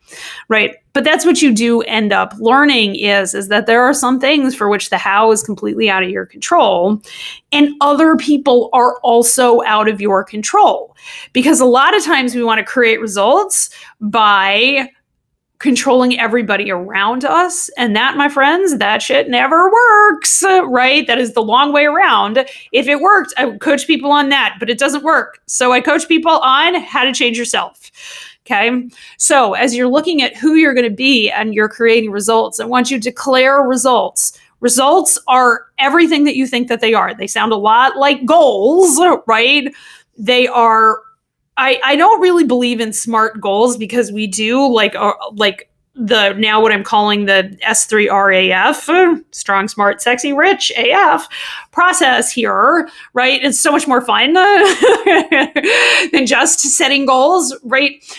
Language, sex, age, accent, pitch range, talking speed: English, female, 30-49, American, 220-285 Hz, 170 wpm